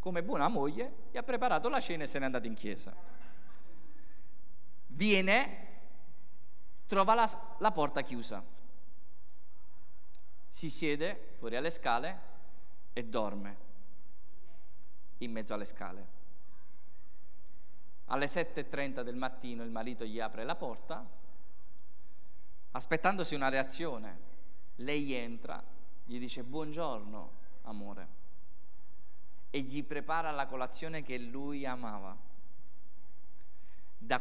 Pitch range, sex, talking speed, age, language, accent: 100-145 Hz, male, 105 wpm, 20-39, Italian, native